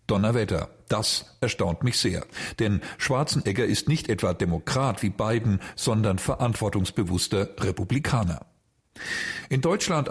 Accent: German